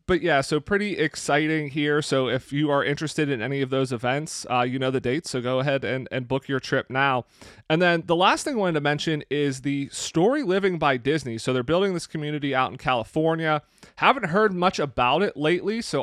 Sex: male